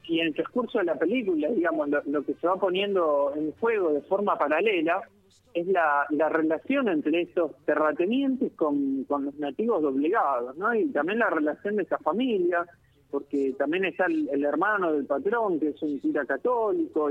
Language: Spanish